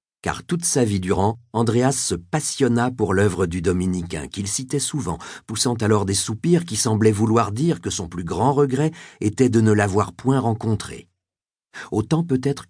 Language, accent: French, French